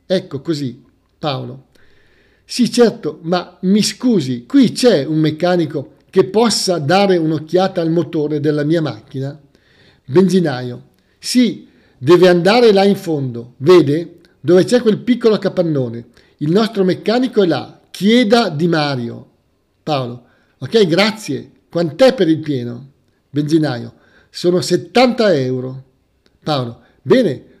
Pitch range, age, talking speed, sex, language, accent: 135-195 Hz, 50-69, 120 wpm, male, Italian, native